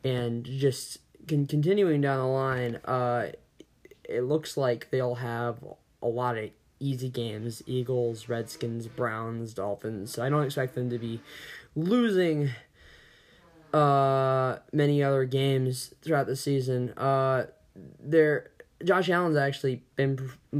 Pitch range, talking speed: 120-140 Hz, 130 wpm